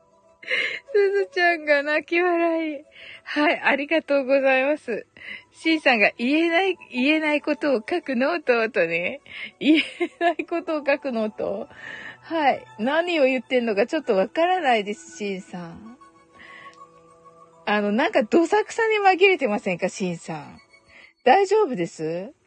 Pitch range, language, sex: 235-390 Hz, Japanese, female